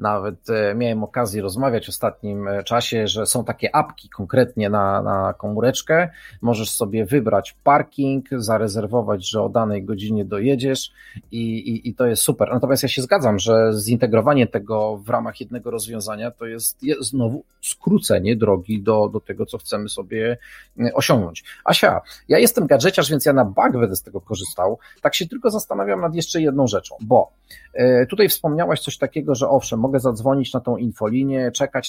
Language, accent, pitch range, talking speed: Polish, native, 110-135 Hz, 165 wpm